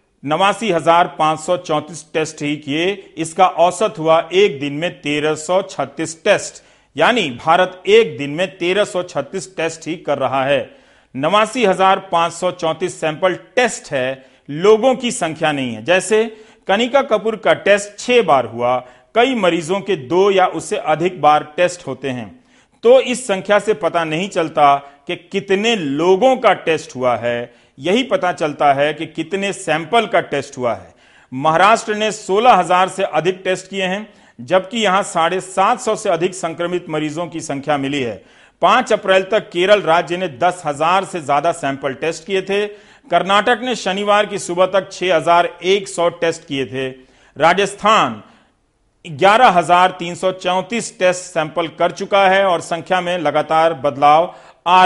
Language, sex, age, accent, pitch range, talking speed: Hindi, male, 50-69, native, 155-195 Hz, 160 wpm